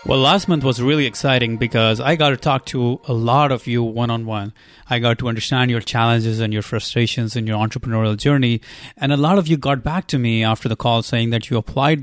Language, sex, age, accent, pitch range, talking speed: English, male, 30-49, Indian, 115-140 Hz, 230 wpm